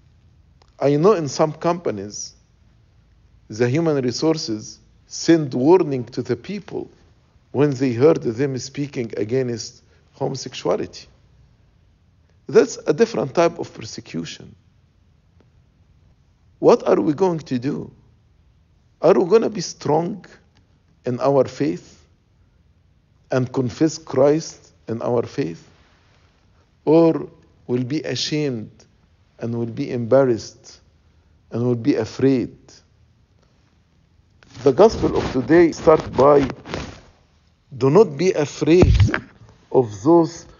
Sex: male